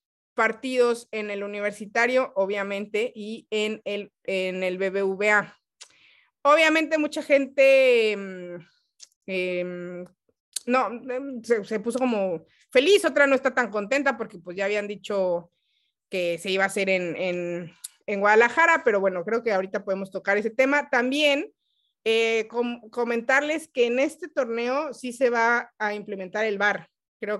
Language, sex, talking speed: Spanish, female, 140 wpm